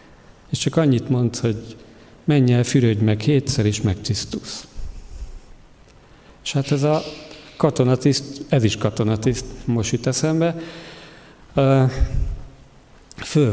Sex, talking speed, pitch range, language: male, 105 wpm, 115-140 Hz, Hungarian